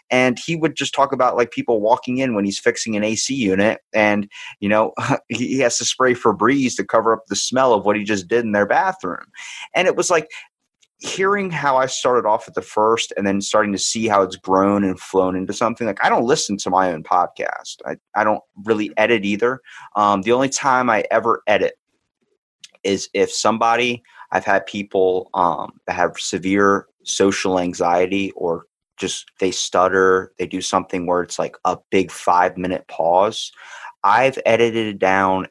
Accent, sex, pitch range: American, male, 90-115 Hz